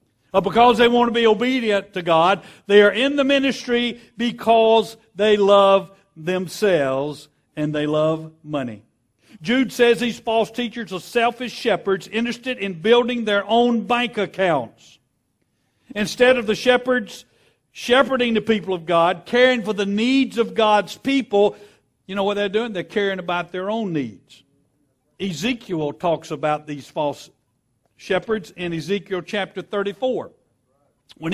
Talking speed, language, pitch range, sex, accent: 140 wpm, English, 175-240 Hz, male, American